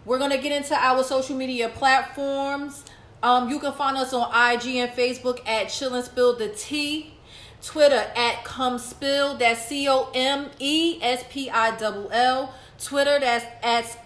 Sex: female